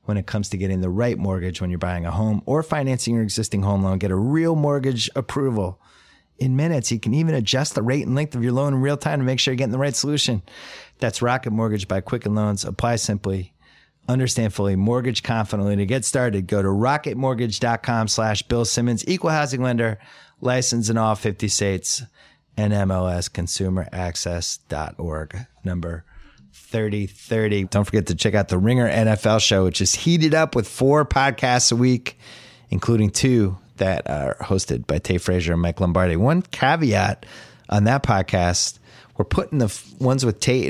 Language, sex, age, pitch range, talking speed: English, male, 30-49, 95-125 Hz, 180 wpm